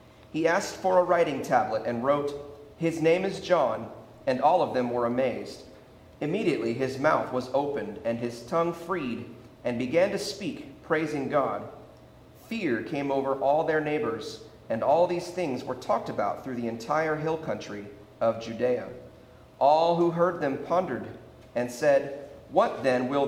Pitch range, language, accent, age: 125-160 Hz, English, American, 40-59